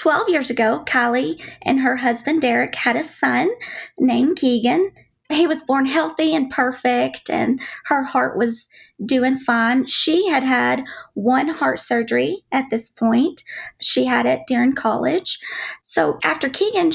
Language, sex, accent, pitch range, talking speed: English, female, American, 240-325 Hz, 150 wpm